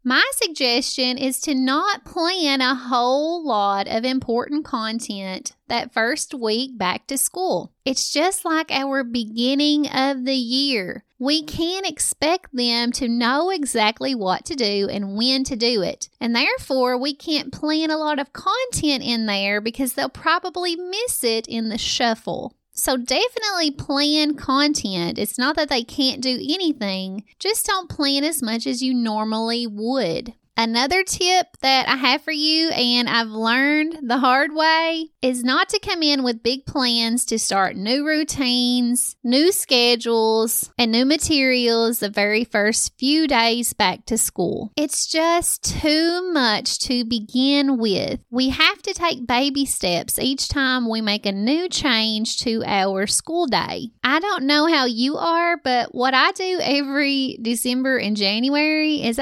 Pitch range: 235-305 Hz